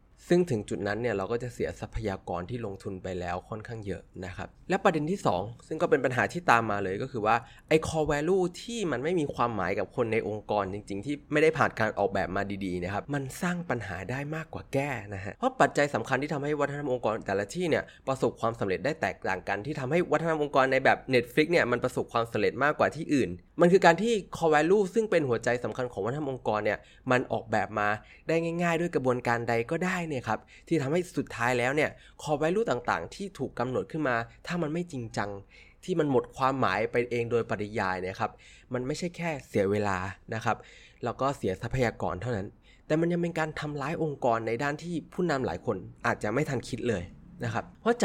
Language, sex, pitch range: Thai, male, 105-155 Hz